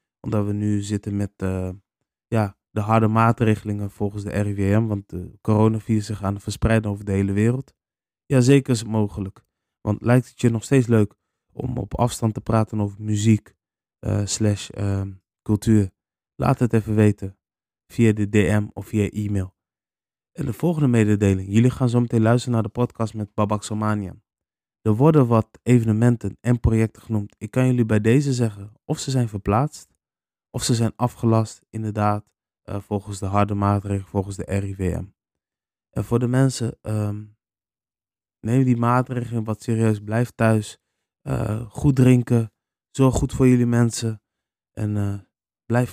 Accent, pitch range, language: Dutch, 100-120 Hz, Dutch